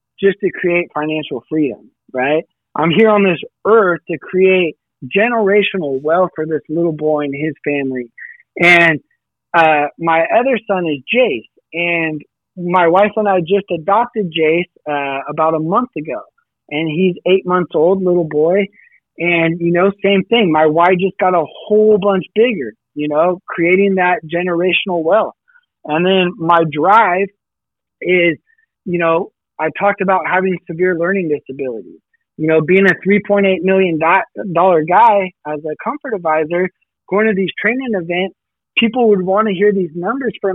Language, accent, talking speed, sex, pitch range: English, American, 160 wpm, male, 155-200 Hz